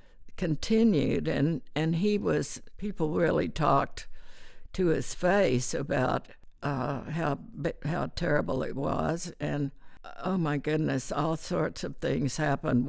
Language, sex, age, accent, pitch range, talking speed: English, female, 60-79, American, 160-190 Hz, 125 wpm